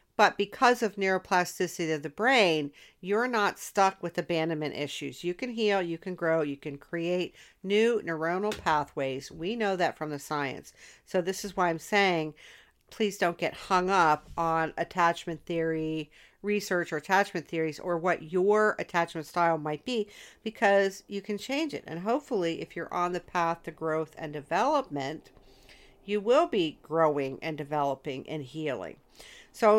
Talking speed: 165 wpm